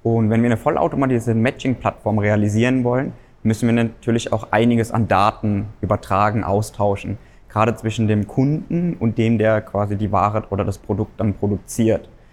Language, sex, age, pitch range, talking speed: German, male, 20-39, 105-120 Hz, 155 wpm